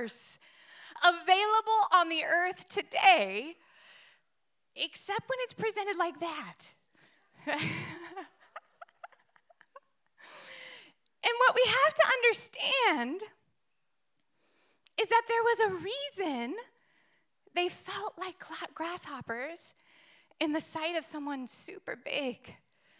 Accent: American